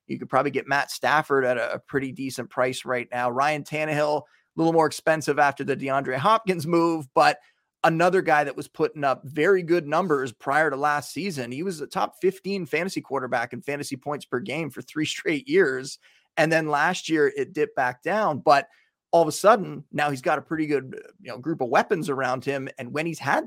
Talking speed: 210 wpm